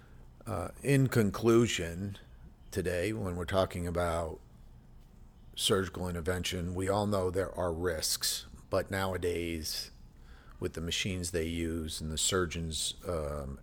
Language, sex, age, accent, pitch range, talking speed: English, male, 50-69, American, 80-100 Hz, 120 wpm